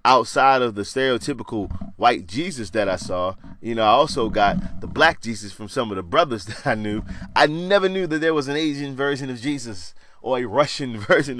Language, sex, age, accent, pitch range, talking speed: English, male, 30-49, American, 95-140 Hz, 210 wpm